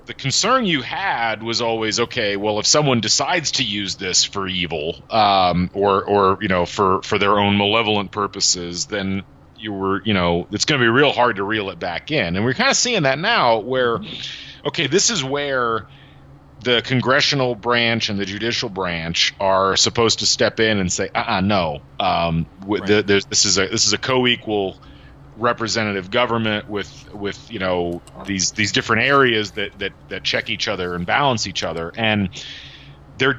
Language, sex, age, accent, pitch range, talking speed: English, male, 30-49, American, 100-125 Hz, 185 wpm